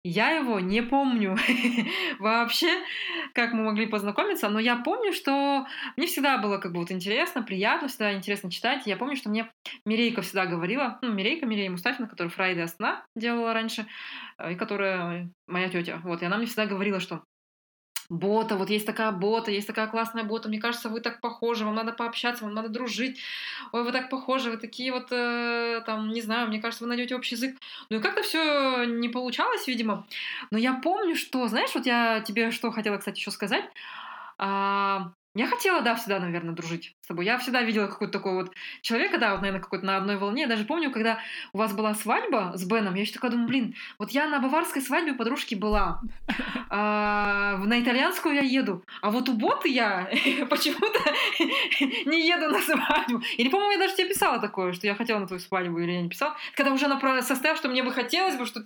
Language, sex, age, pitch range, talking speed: Russian, female, 20-39, 205-265 Hz, 200 wpm